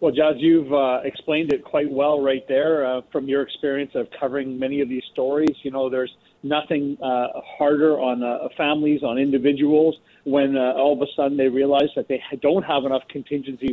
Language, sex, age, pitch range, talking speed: English, male, 40-59, 135-160 Hz, 195 wpm